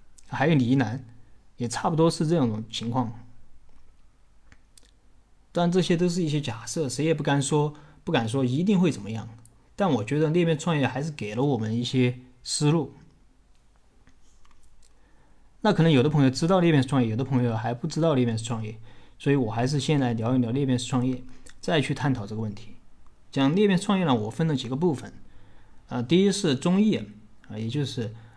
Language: Chinese